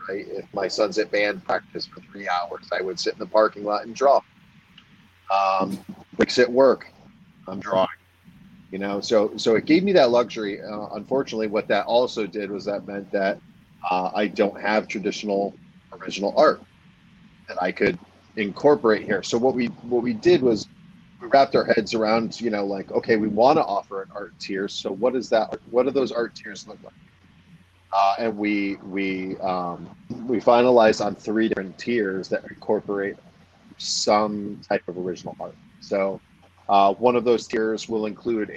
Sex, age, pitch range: male, 40-59, 100-120 Hz